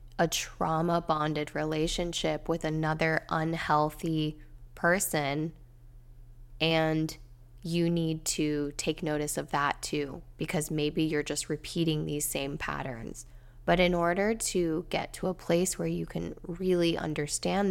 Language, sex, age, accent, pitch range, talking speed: English, female, 10-29, American, 145-170 Hz, 125 wpm